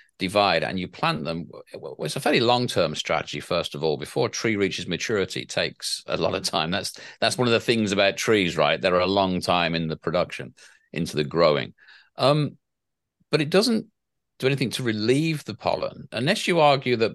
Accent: British